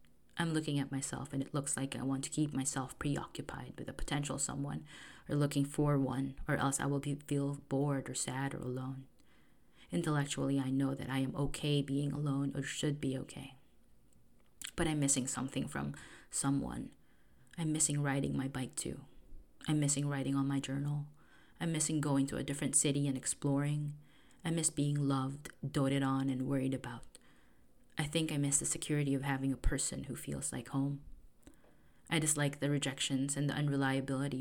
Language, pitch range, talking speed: English, 135-145 Hz, 180 wpm